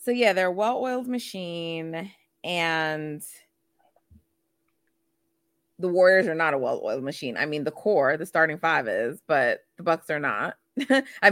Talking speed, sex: 150 wpm, female